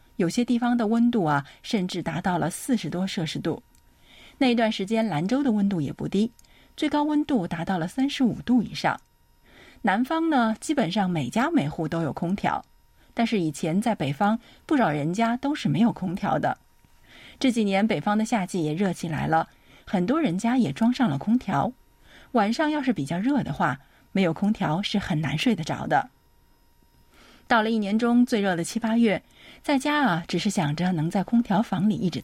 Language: Chinese